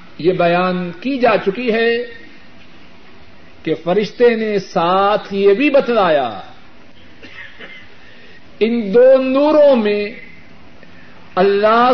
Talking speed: 90 wpm